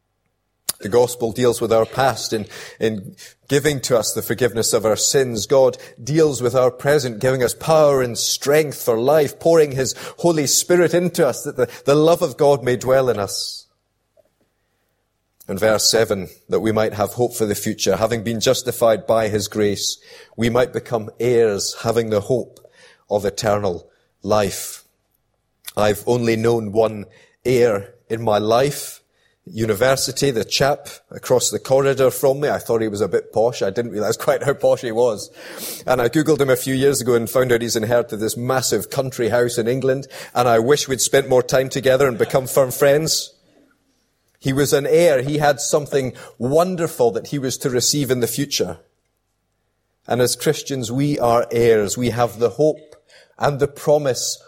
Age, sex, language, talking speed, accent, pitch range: 30-49, male, English, 180 wpm, British, 115-140 Hz